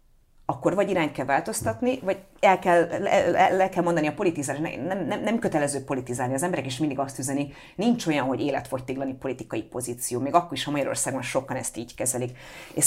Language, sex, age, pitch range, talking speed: Hungarian, female, 30-49, 130-180 Hz, 200 wpm